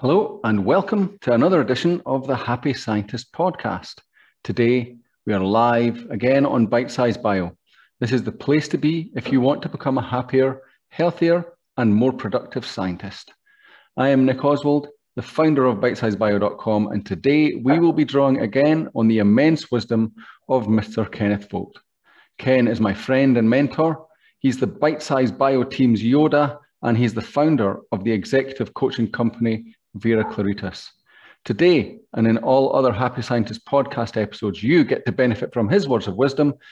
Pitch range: 110-145 Hz